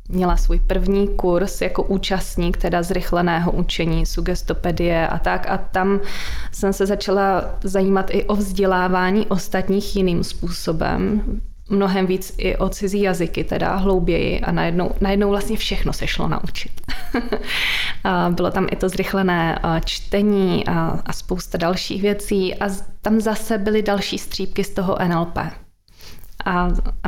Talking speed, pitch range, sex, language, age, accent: 135 wpm, 180-200 Hz, female, Czech, 20-39, native